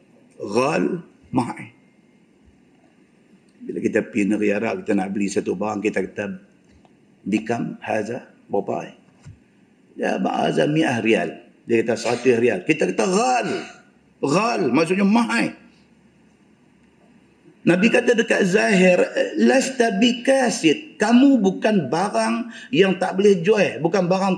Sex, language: male, Malay